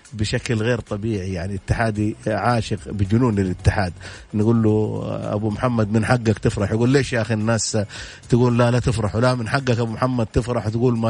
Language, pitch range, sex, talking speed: Arabic, 105-120 Hz, male, 175 wpm